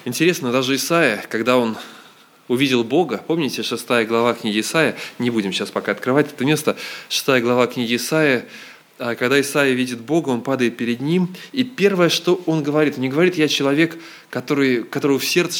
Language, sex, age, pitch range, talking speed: Russian, male, 20-39, 120-150 Hz, 170 wpm